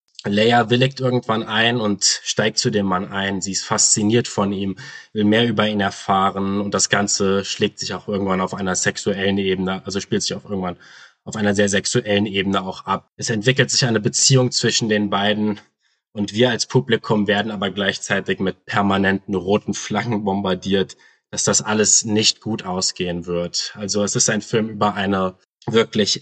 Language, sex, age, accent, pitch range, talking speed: German, male, 20-39, German, 100-110 Hz, 180 wpm